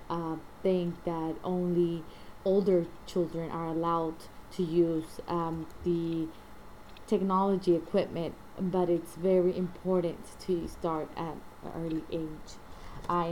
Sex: female